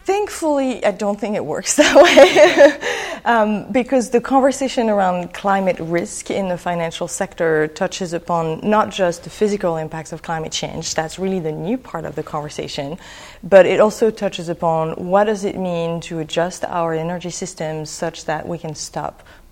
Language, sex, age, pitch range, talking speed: English, female, 30-49, 165-210 Hz, 170 wpm